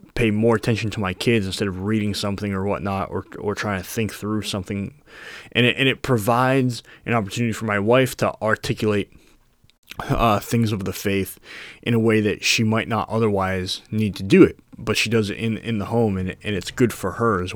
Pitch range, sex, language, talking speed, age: 100-120 Hz, male, English, 215 wpm, 20-39